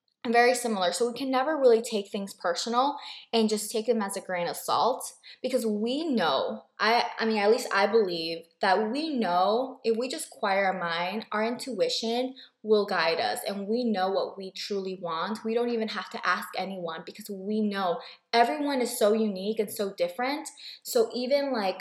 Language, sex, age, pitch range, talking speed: English, female, 20-39, 190-230 Hz, 195 wpm